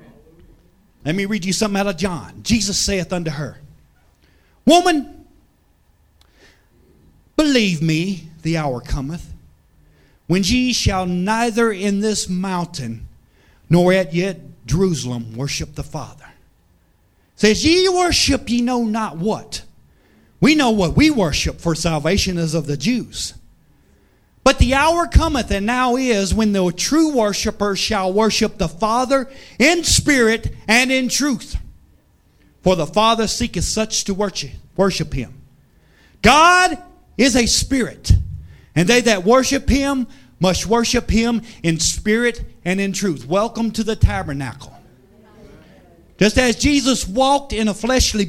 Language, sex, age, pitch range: English, male, 40-59, 160-240 Hz